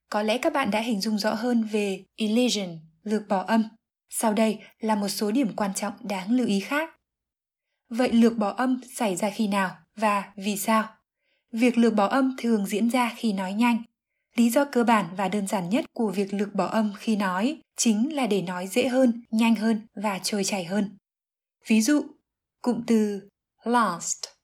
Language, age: Vietnamese, 20-39